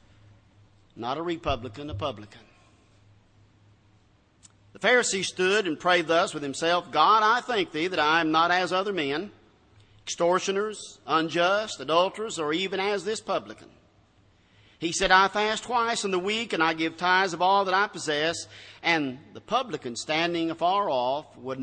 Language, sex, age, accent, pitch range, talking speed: English, male, 50-69, American, 110-175 Hz, 155 wpm